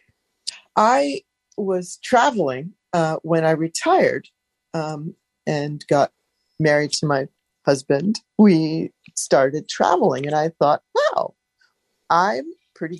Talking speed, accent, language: 105 wpm, American, English